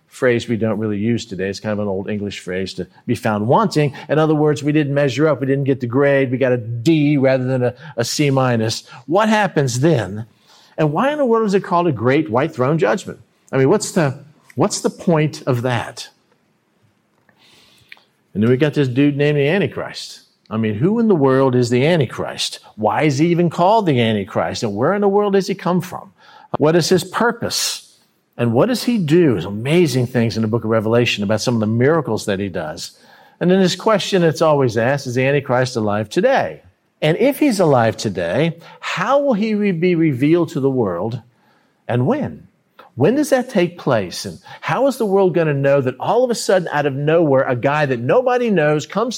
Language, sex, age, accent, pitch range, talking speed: English, male, 50-69, American, 125-185 Hz, 215 wpm